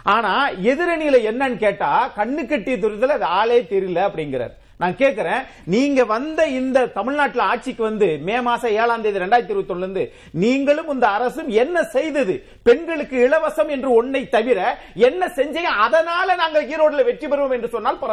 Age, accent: 40-59, native